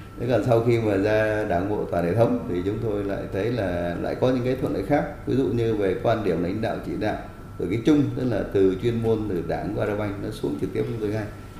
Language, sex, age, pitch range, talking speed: Vietnamese, male, 20-39, 95-120 Hz, 265 wpm